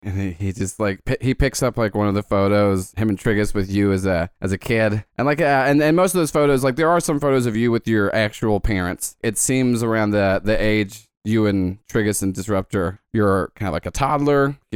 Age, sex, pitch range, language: 30-49, male, 95-115 Hz, English